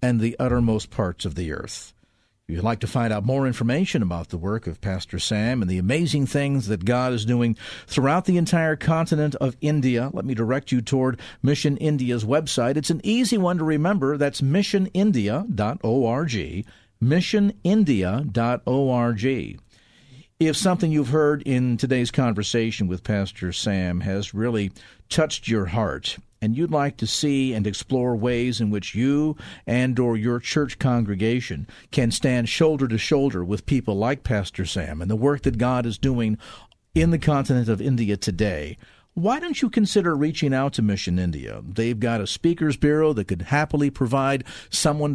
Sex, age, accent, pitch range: male, 50-69, American, 110-150 Hz